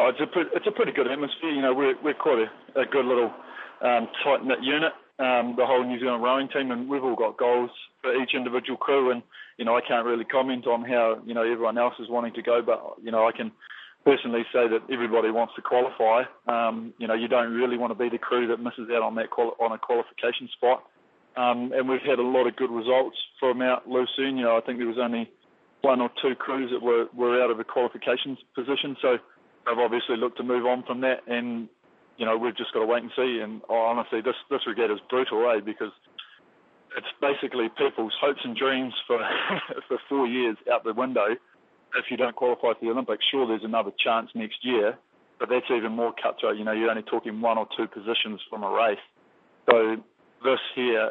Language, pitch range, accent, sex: English, 115-130 Hz, Australian, male